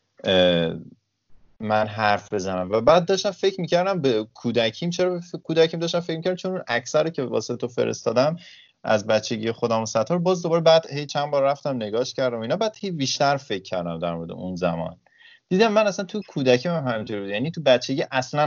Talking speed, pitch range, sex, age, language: 180 wpm, 105-150 Hz, male, 30-49, Persian